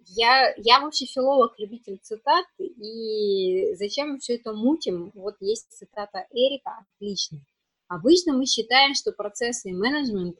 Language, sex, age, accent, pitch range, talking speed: Russian, female, 20-39, native, 180-235 Hz, 140 wpm